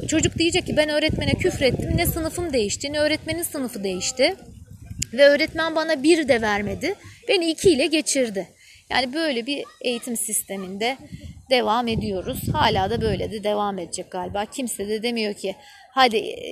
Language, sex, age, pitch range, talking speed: Turkish, female, 30-49, 205-285 Hz, 155 wpm